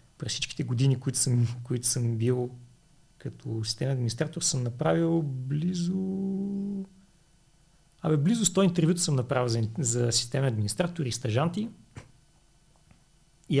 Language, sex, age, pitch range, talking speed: Bulgarian, male, 40-59, 120-160 Hz, 120 wpm